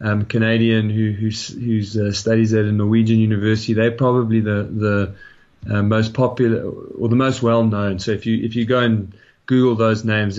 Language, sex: English, male